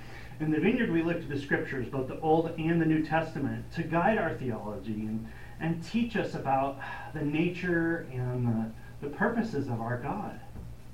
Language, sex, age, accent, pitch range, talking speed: English, male, 40-59, American, 115-155 Hz, 180 wpm